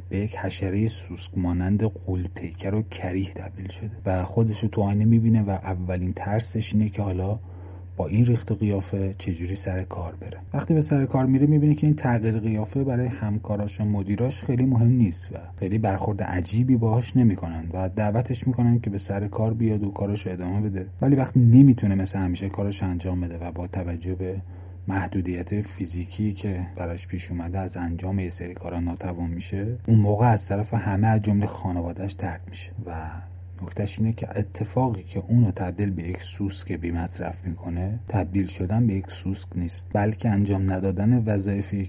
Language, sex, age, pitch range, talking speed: Persian, male, 30-49, 90-110 Hz, 180 wpm